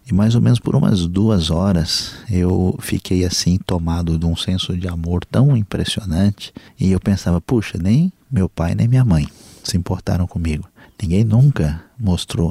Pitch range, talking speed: 85-115 Hz, 170 wpm